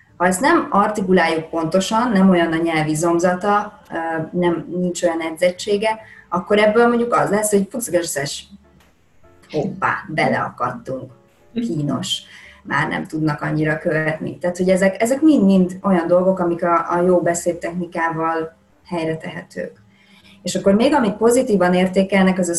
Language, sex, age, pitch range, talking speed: Hungarian, female, 30-49, 160-190 Hz, 140 wpm